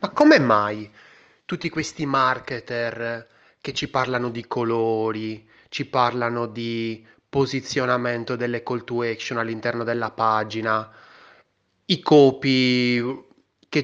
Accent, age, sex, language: native, 20-39, male, Italian